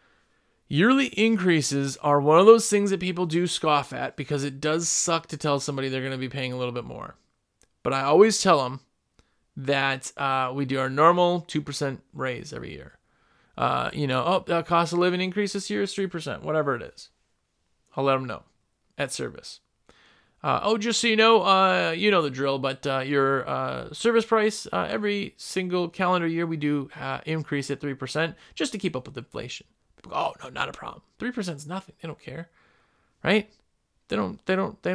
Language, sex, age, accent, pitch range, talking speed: English, male, 30-49, American, 145-210 Hz, 200 wpm